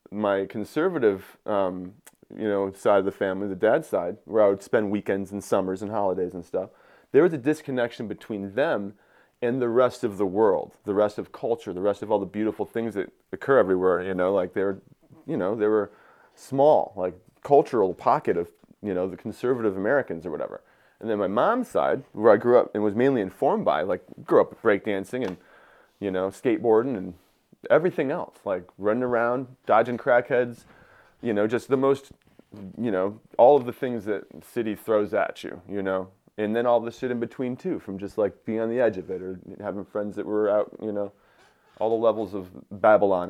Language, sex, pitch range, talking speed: English, male, 95-120 Hz, 205 wpm